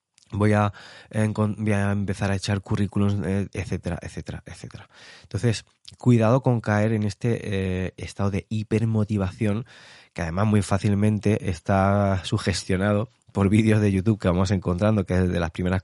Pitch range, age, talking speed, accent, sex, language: 95-105 Hz, 20-39, 150 wpm, Spanish, male, Spanish